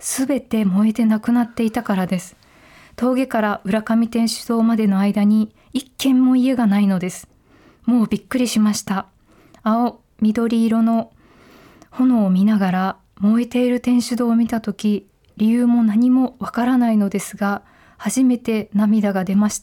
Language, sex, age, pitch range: Japanese, female, 20-39, 205-240 Hz